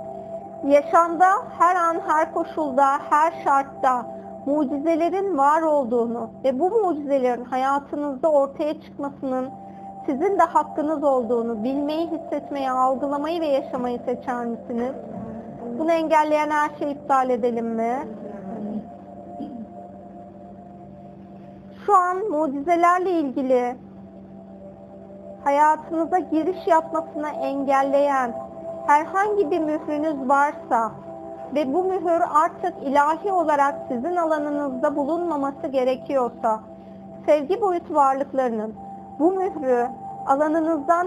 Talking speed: 90 wpm